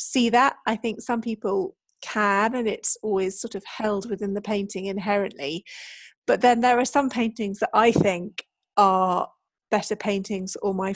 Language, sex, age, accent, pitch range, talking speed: English, female, 40-59, British, 200-240 Hz, 170 wpm